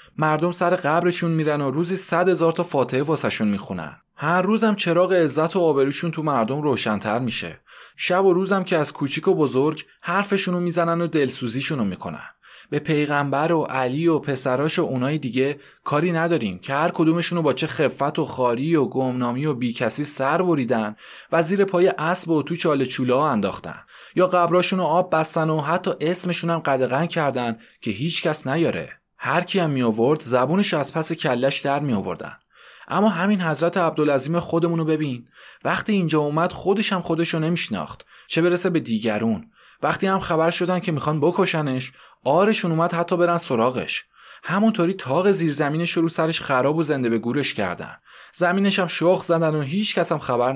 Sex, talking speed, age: male, 170 wpm, 20-39